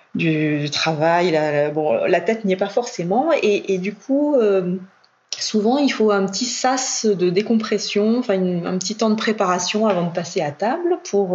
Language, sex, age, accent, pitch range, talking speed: French, female, 30-49, French, 170-210 Hz, 195 wpm